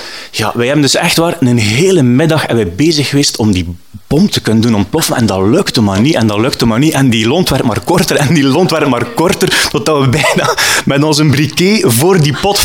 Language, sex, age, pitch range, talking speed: Dutch, male, 30-49, 130-190 Hz, 240 wpm